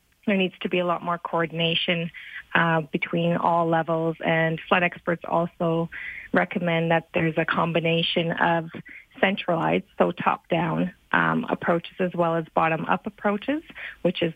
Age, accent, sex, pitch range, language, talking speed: 30-49, American, female, 165-195 Hz, English, 140 wpm